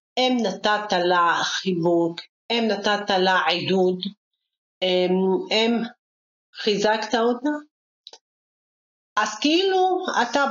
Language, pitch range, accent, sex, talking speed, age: Hebrew, 185-240 Hz, native, female, 80 wpm, 40-59